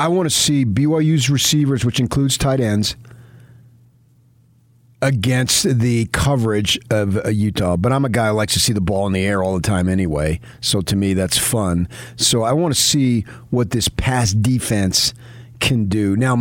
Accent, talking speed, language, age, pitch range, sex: American, 180 wpm, English, 40-59, 100-125 Hz, male